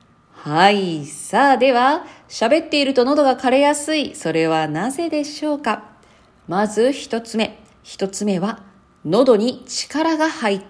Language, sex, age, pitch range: Japanese, female, 40-59, 160-270 Hz